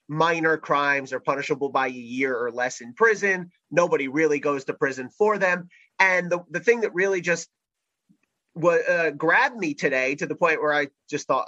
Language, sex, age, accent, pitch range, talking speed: English, male, 30-49, American, 145-235 Hz, 195 wpm